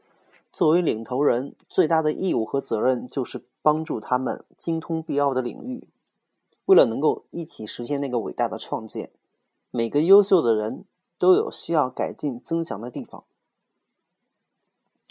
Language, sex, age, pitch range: Chinese, male, 30-49, 125-185 Hz